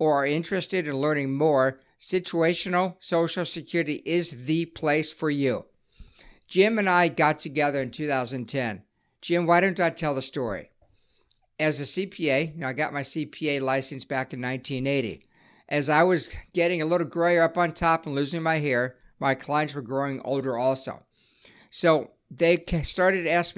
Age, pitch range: 50-69, 135-165 Hz